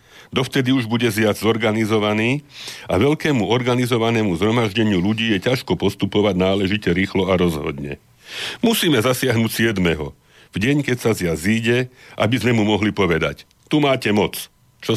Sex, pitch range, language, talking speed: male, 85-120 Hz, Slovak, 140 wpm